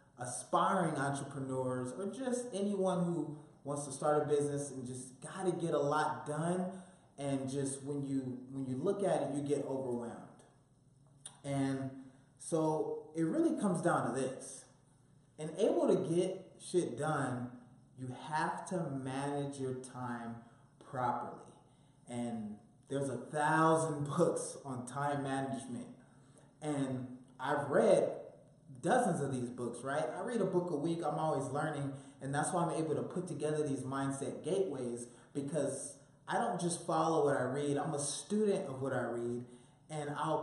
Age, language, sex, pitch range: 20-39, English, male, 130-155 Hz